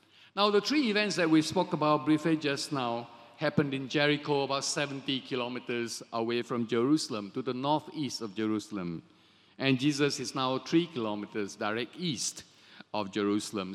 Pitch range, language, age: 120-175 Hz, English, 50-69